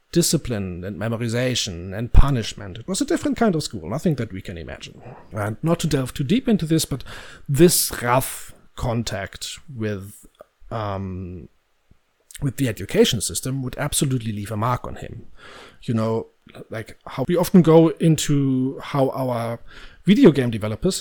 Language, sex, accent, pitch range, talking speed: English, male, German, 115-160 Hz, 155 wpm